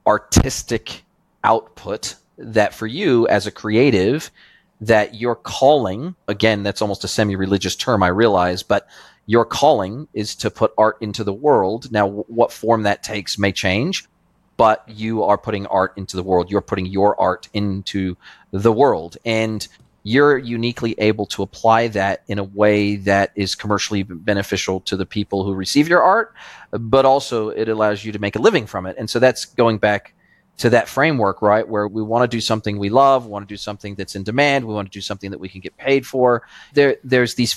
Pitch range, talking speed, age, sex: 100-120 Hz, 195 wpm, 30-49, male